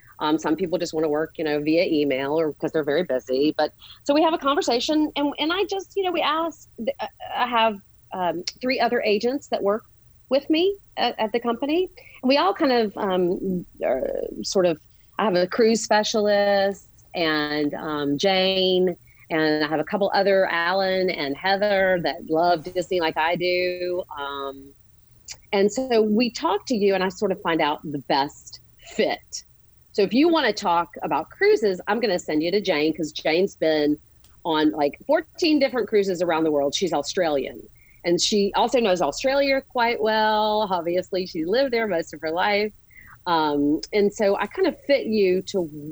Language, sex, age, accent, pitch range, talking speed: English, female, 40-59, American, 155-235 Hz, 185 wpm